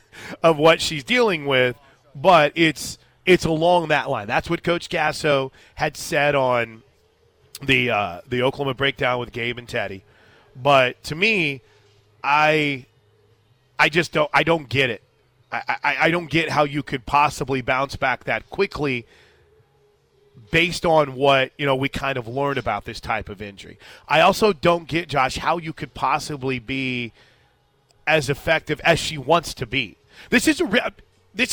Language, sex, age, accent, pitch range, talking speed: English, male, 30-49, American, 125-160 Hz, 165 wpm